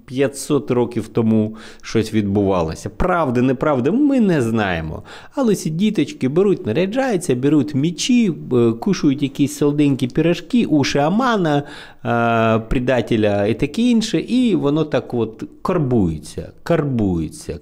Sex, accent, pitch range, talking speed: male, native, 95-150 Hz, 110 wpm